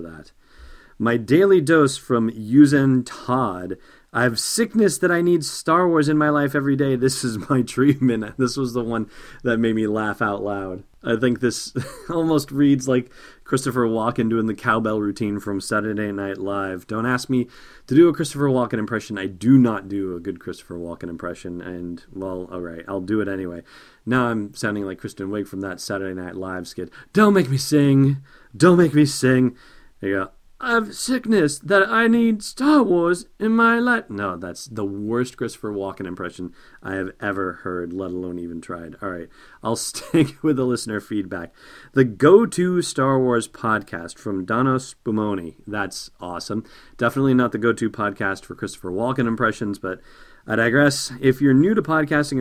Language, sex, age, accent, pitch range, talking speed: English, male, 30-49, American, 100-140 Hz, 180 wpm